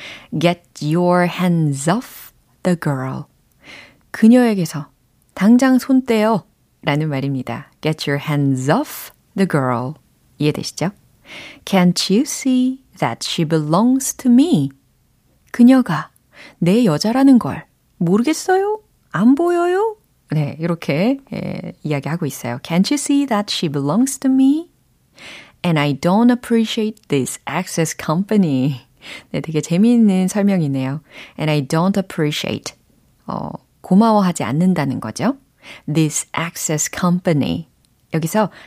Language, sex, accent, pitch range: Korean, female, native, 150-225 Hz